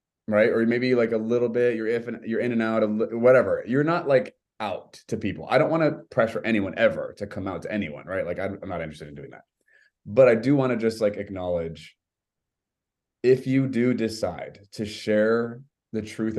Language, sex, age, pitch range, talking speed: English, male, 30-49, 90-110 Hz, 210 wpm